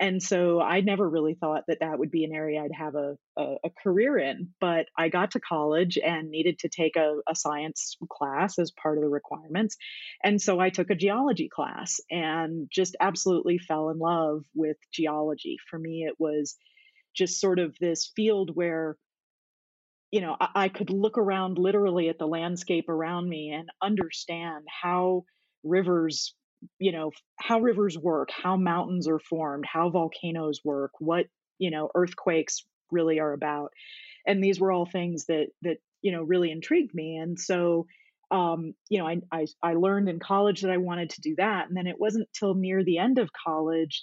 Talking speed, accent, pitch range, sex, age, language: 185 wpm, American, 160-190 Hz, female, 30-49, English